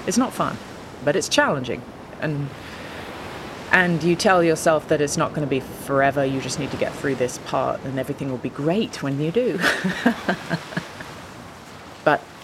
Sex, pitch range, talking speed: female, 135-175 Hz, 165 wpm